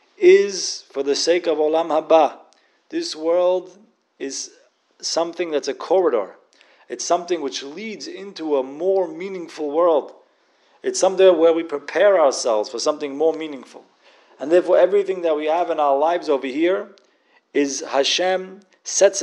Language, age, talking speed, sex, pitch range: English, 40-59, 145 wpm, male, 150-200 Hz